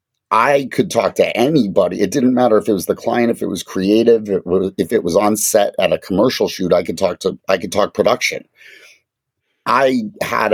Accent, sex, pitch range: American, male, 95-115 Hz